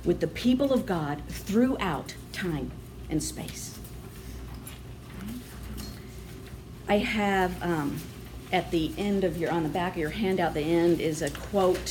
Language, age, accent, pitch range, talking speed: English, 50-69, American, 160-235 Hz, 140 wpm